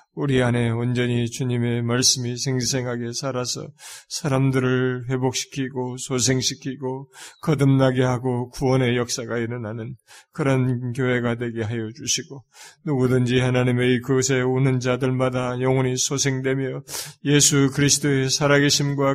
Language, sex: Korean, male